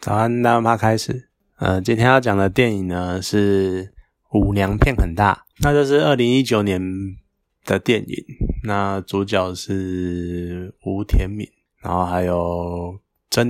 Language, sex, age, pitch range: Chinese, male, 20-39, 95-120 Hz